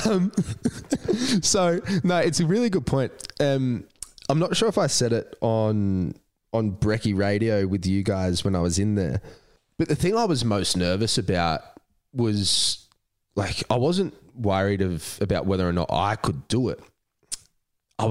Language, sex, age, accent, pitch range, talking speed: English, male, 20-39, Australian, 100-135 Hz, 170 wpm